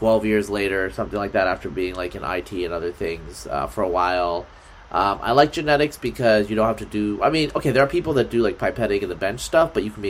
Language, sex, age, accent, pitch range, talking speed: English, male, 30-49, American, 105-135 Hz, 275 wpm